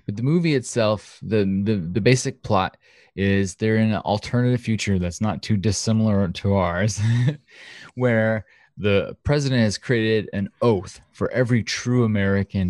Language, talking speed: English, 150 wpm